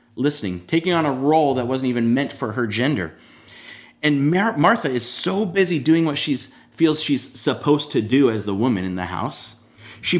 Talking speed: 195 wpm